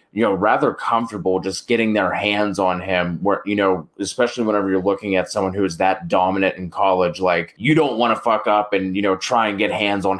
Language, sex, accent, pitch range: English, male, American, 95-105 Hz